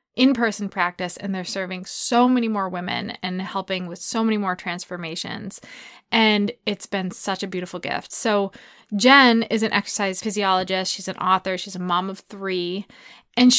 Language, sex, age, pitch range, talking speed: English, female, 20-39, 185-235 Hz, 170 wpm